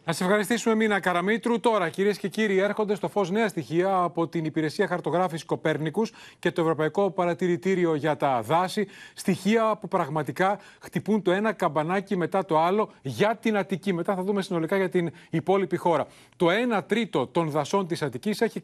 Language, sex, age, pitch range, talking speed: Greek, male, 30-49, 160-205 Hz, 175 wpm